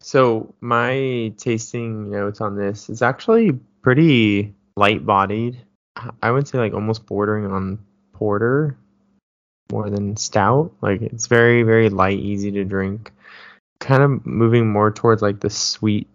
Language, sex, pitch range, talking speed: English, male, 100-120 Hz, 140 wpm